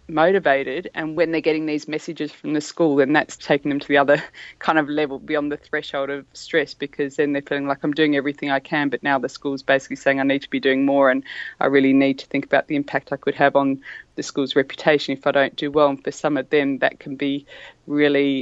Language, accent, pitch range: English, Australian, 135-150 Hz